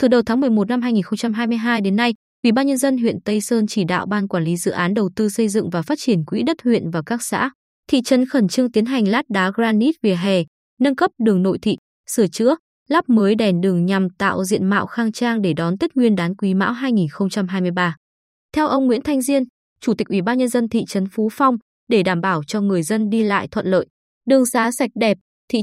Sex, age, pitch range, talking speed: female, 20-39, 195-245 Hz, 235 wpm